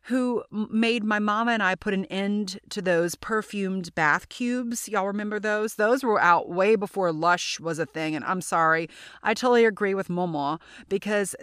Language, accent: English, American